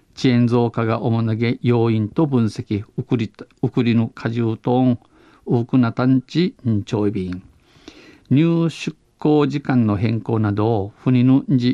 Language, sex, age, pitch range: Japanese, male, 50-69, 115-135 Hz